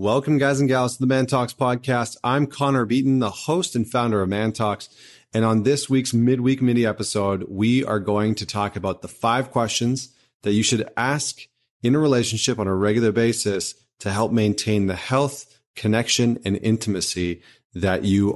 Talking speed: 185 wpm